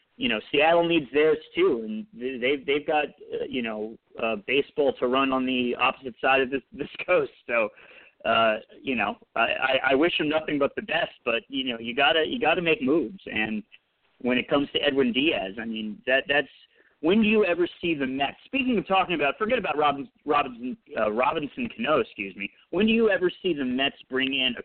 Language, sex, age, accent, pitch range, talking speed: English, male, 40-59, American, 125-180 Hz, 210 wpm